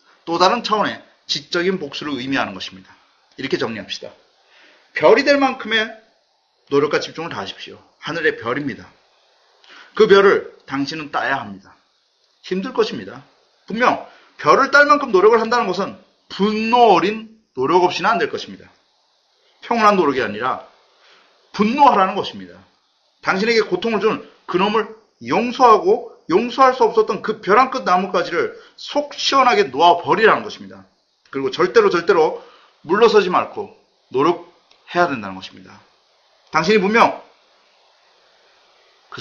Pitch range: 175-275 Hz